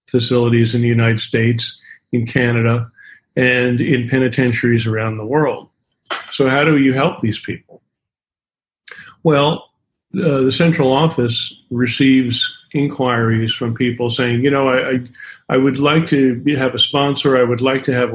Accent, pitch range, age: American, 125-160 Hz, 50-69